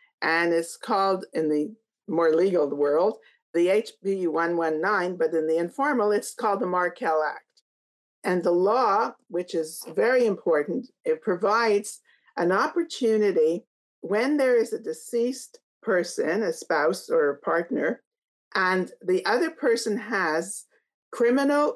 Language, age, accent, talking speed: English, 50-69, American, 130 wpm